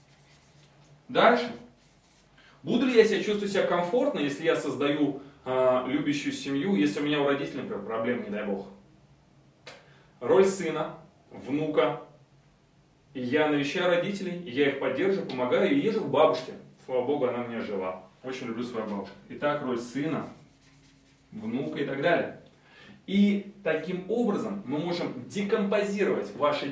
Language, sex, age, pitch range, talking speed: Russian, male, 30-49, 130-190 Hz, 135 wpm